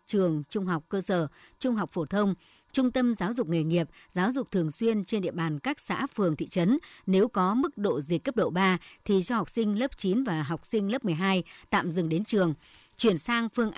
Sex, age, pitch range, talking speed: male, 60-79, 175-230 Hz, 230 wpm